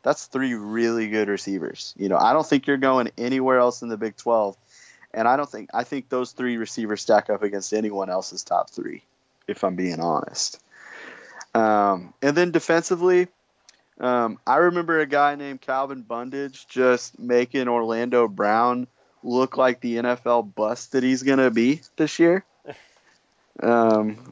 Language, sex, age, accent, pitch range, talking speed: English, male, 30-49, American, 100-130 Hz, 165 wpm